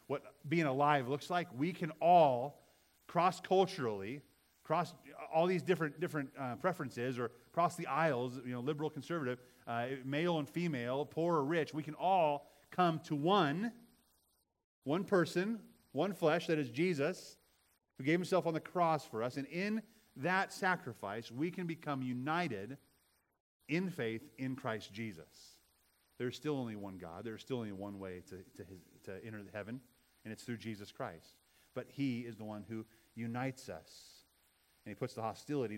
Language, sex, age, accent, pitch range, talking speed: English, male, 30-49, American, 110-160 Hz, 170 wpm